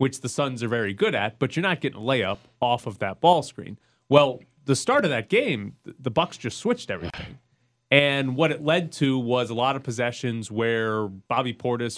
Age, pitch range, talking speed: 30-49, 110-140 Hz, 210 wpm